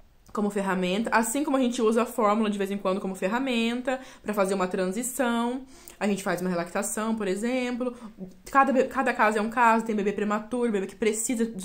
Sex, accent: female, Brazilian